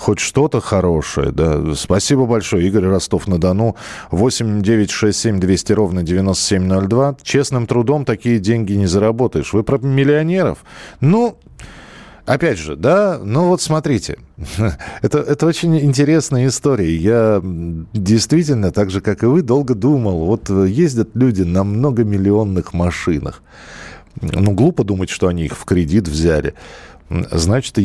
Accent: native